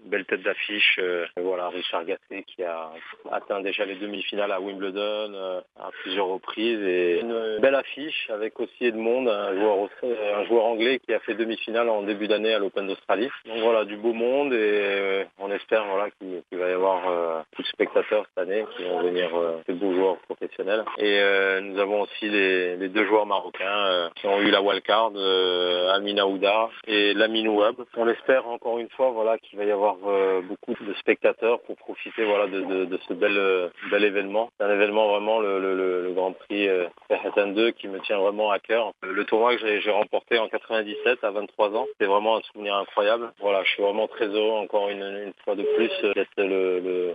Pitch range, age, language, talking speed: 95-115 Hz, 30-49, Arabic, 215 wpm